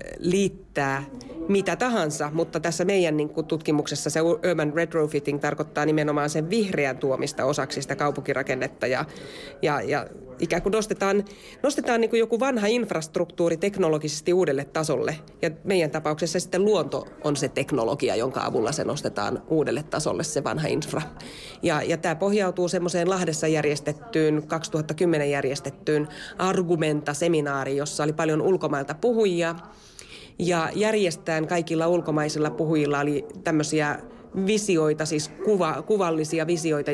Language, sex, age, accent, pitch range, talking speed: Finnish, female, 30-49, native, 150-190 Hz, 120 wpm